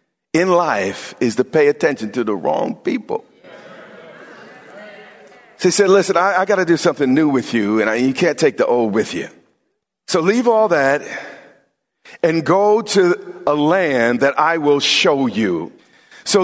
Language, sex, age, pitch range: English, male, 50-69, 150-200 Hz